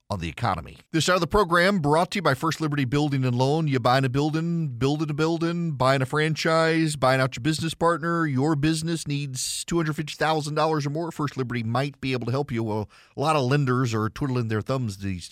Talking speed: 215 wpm